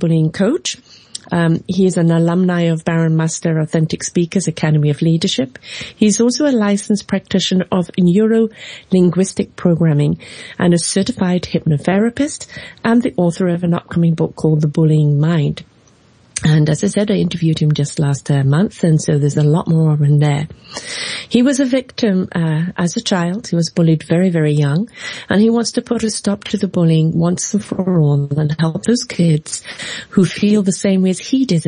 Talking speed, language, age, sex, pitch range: 185 wpm, English, 40-59, female, 155-200 Hz